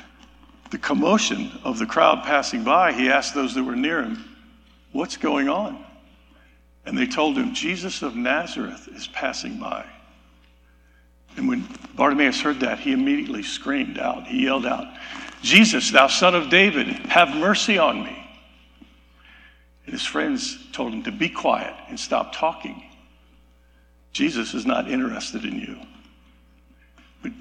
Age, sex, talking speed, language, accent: 60-79, male, 145 wpm, English, American